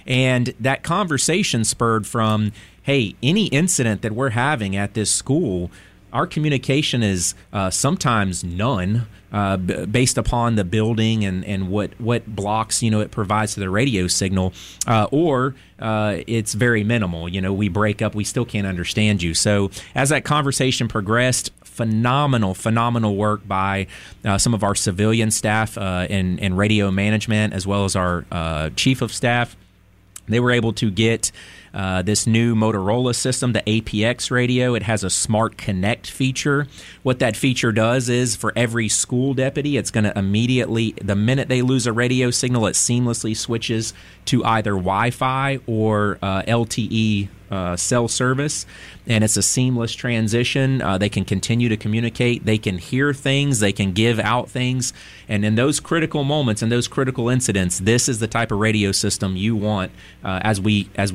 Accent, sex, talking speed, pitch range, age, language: American, male, 170 wpm, 100-125 Hz, 30-49, English